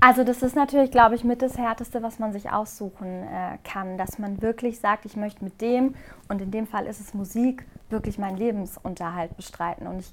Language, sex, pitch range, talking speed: German, female, 205-235 Hz, 215 wpm